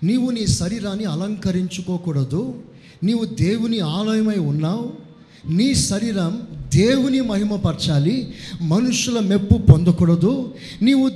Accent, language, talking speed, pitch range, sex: native, Telugu, 85 wpm, 155-250 Hz, male